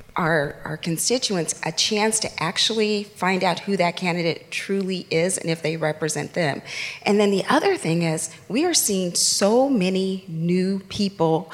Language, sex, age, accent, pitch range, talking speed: English, female, 40-59, American, 170-205 Hz, 165 wpm